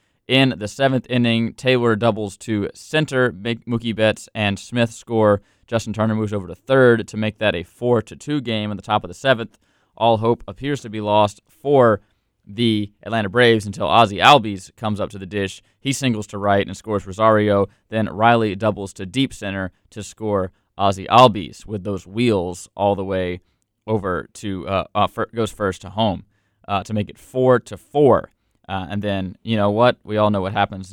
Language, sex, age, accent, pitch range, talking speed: English, male, 20-39, American, 100-115 Hz, 190 wpm